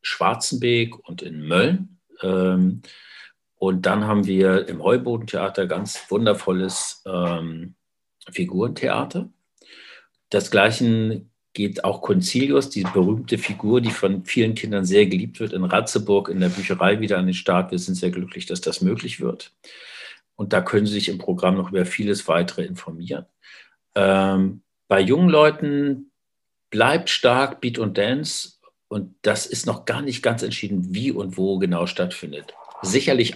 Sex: male